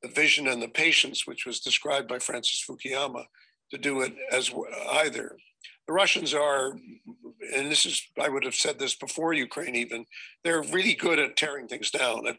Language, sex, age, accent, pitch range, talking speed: English, male, 50-69, American, 135-160 Hz, 185 wpm